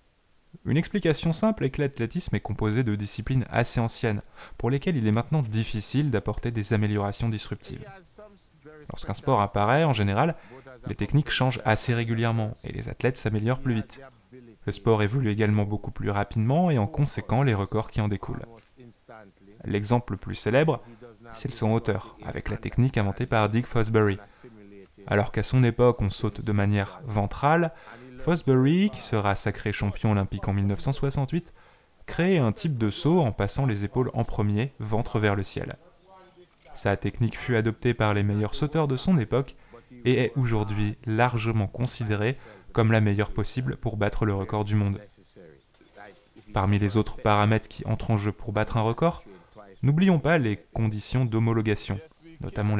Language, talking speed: French, 165 wpm